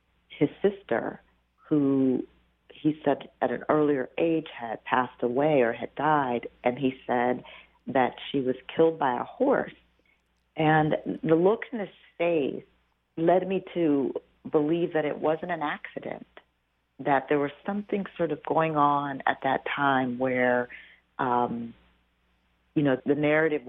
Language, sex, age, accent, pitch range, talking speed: English, female, 50-69, American, 120-155 Hz, 145 wpm